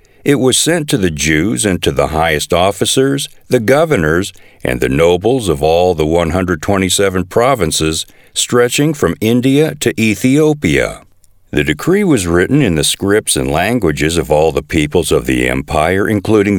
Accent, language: American, English